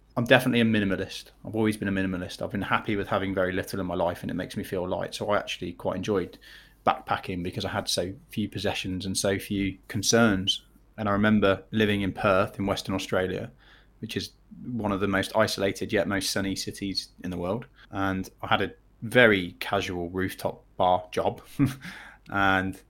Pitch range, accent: 95-115 Hz, British